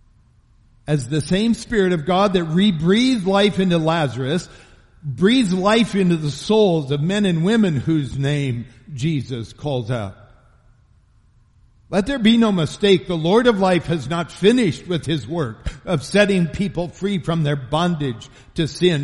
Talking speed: 155 wpm